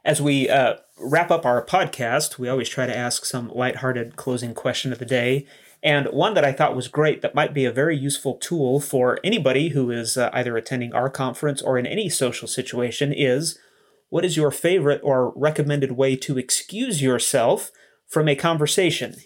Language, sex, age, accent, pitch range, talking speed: English, male, 30-49, American, 125-150 Hz, 190 wpm